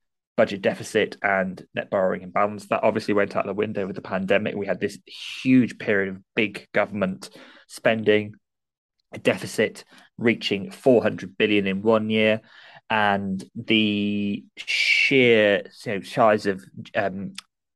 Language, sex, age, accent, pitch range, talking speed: English, male, 20-39, British, 95-115 Hz, 135 wpm